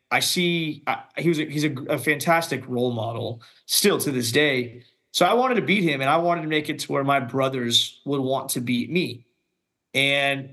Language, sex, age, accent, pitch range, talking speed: English, male, 20-39, American, 130-155 Hz, 215 wpm